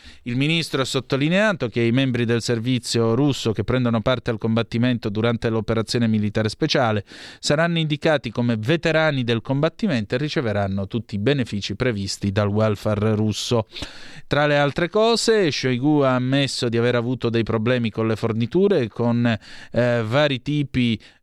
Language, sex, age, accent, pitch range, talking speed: Italian, male, 30-49, native, 110-145 Hz, 150 wpm